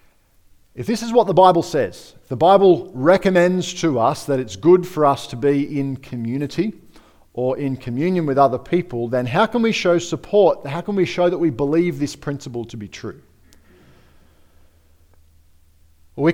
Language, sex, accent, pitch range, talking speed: English, male, Australian, 105-165 Hz, 170 wpm